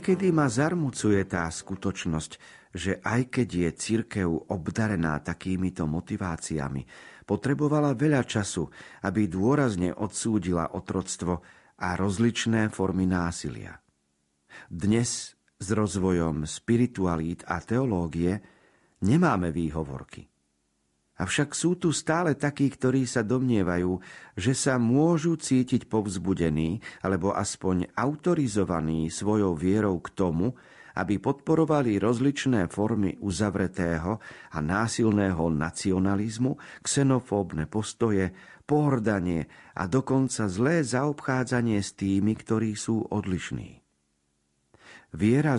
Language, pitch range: Slovak, 90-125 Hz